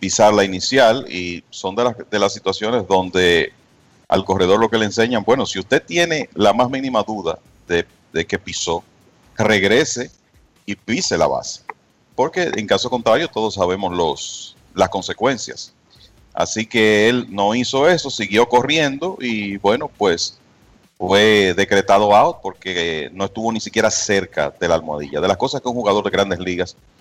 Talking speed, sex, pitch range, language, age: 165 wpm, male, 90-110 Hz, Spanish, 40-59